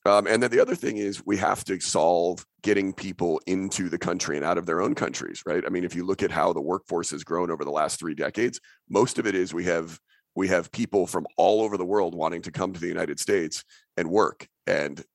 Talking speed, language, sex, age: 250 wpm, English, male, 40-59